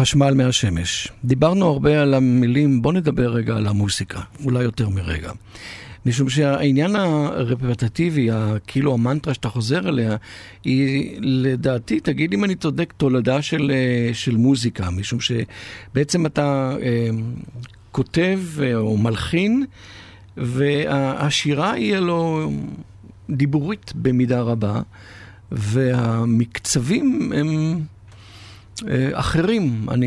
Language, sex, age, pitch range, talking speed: Hebrew, male, 50-69, 115-155 Hz, 100 wpm